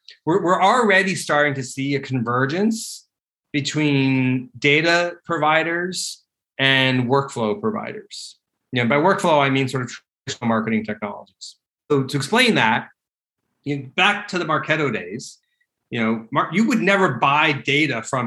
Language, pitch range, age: English, 130-160 Hz, 30-49